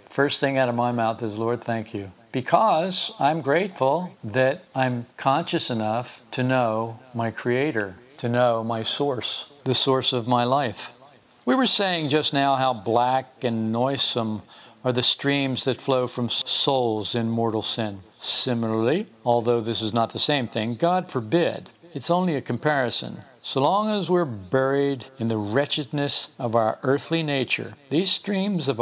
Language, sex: English, male